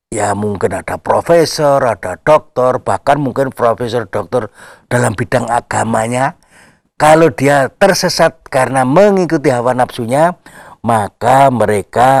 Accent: native